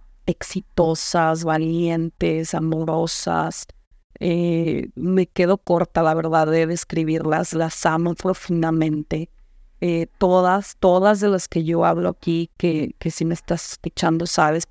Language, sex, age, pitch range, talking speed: Spanish, female, 30-49, 165-185 Hz, 120 wpm